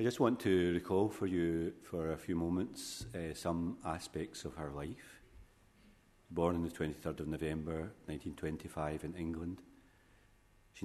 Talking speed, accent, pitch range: 150 wpm, British, 80-95 Hz